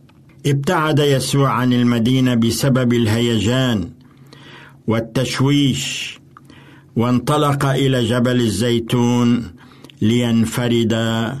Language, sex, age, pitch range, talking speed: Arabic, male, 60-79, 125-145 Hz, 65 wpm